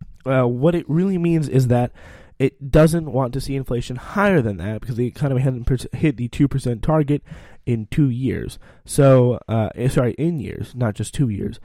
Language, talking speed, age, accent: English, 205 wpm, 20-39, American